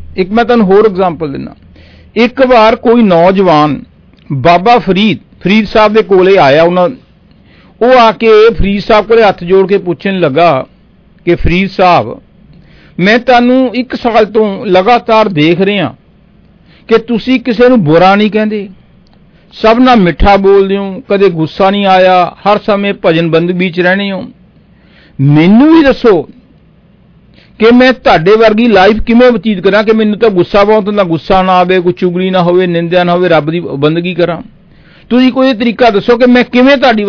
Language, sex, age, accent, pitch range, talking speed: English, male, 50-69, Indian, 180-230 Hz, 150 wpm